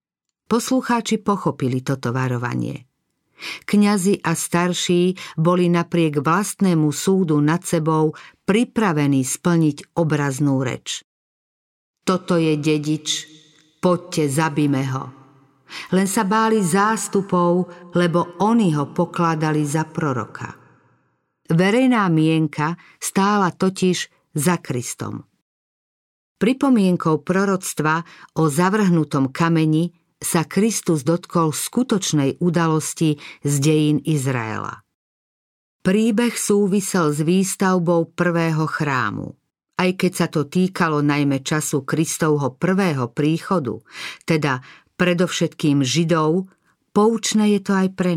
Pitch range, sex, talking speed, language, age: 150-190 Hz, female, 95 wpm, Slovak, 50-69